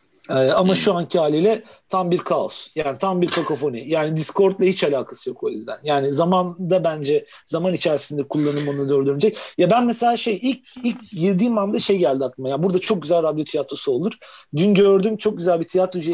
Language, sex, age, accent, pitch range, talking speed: Turkish, male, 40-59, native, 160-210 Hz, 190 wpm